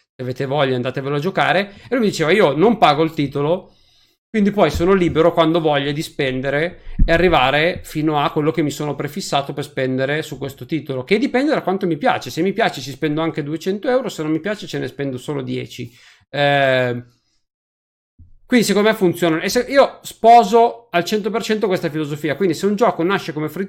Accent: native